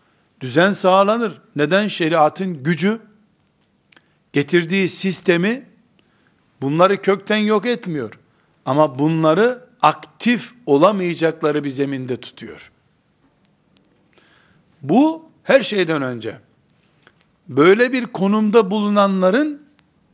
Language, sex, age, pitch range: Turkish, male, 60-79, 165-215 Hz